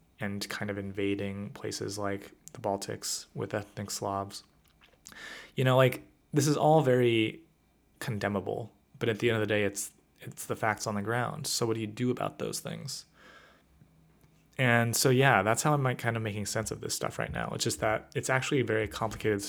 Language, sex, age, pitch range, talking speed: English, male, 20-39, 105-125 Hz, 200 wpm